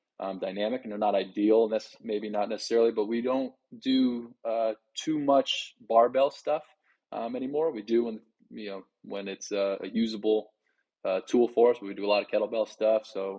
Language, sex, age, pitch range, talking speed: English, male, 20-39, 100-115 Hz, 195 wpm